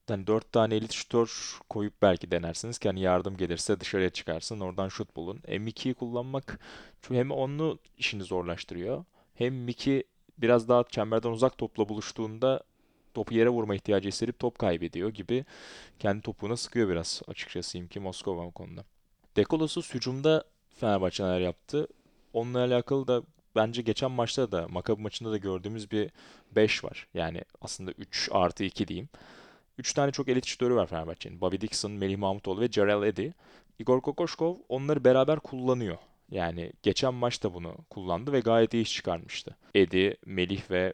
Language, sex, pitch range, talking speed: Turkish, male, 95-130 Hz, 155 wpm